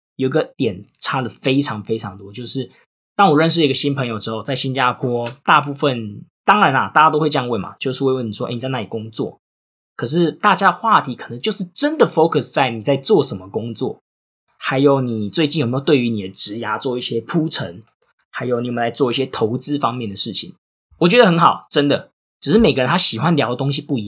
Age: 20-39